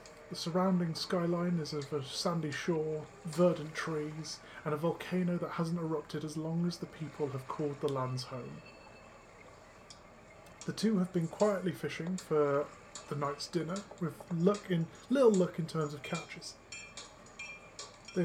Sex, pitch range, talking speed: male, 150-180 Hz, 150 wpm